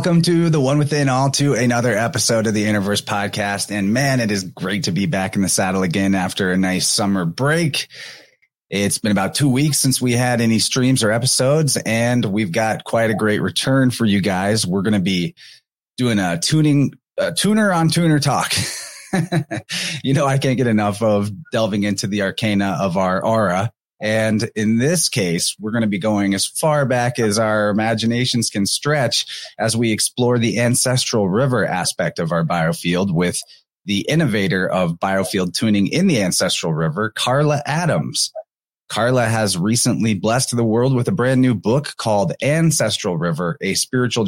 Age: 30-49